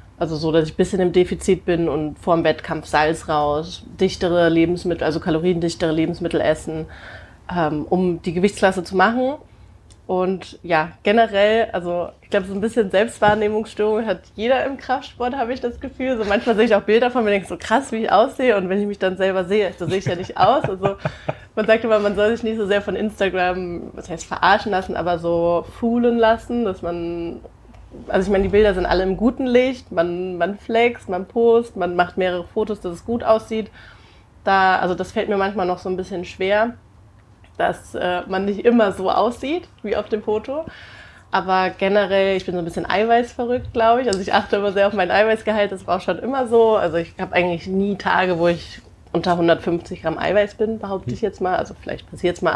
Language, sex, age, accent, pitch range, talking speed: German, female, 30-49, German, 170-215 Hz, 210 wpm